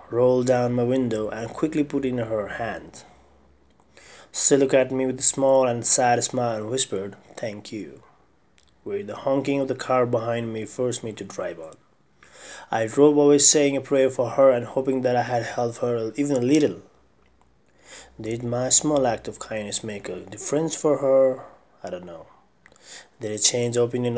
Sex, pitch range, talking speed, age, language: male, 110-135 Hz, 180 wpm, 30-49, English